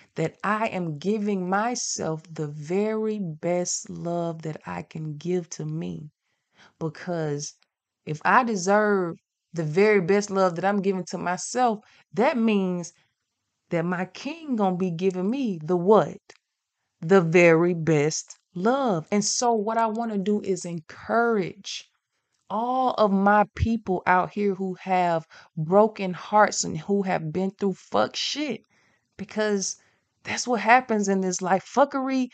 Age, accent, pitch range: 20-39, American, 170-210 Hz